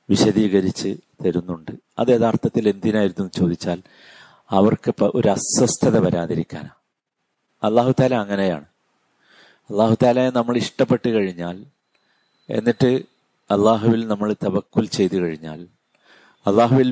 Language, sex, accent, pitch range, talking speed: Malayalam, male, native, 95-120 Hz, 90 wpm